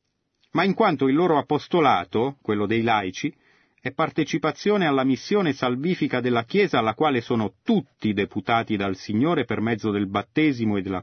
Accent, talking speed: native, 160 wpm